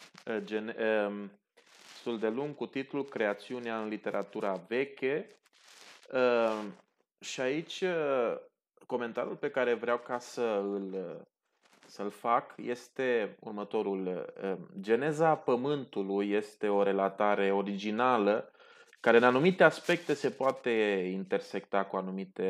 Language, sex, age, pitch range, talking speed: Romanian, male, 20-39, 100-120 Hz, 100 wpm